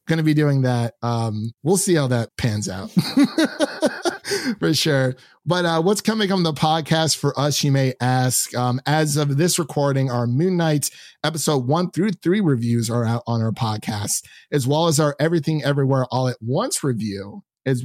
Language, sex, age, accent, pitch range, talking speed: English, male, 30-49, American, 120-160 Hz, 180 wpm